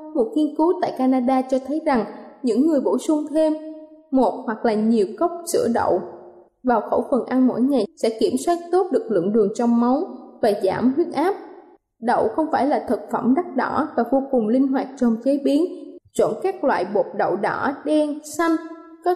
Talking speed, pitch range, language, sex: 200 wpm, 245-320 Hz, Vietnamese, female